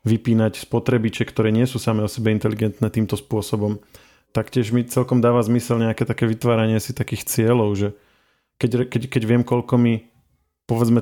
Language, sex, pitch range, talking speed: Slovak, male, 110-120 Hz, 160 wpm